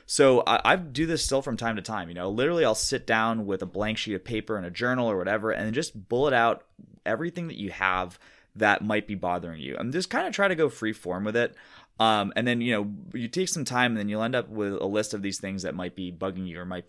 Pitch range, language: 90-115 Hz, English